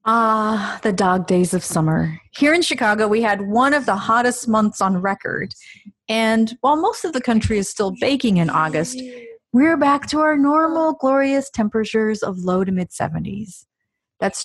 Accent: American